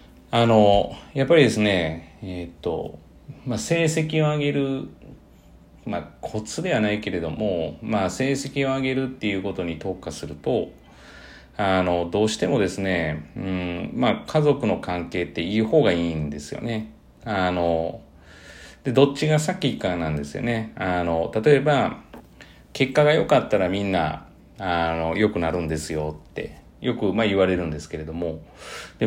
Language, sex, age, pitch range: Japanese, male, 40-59, 85-135 Hz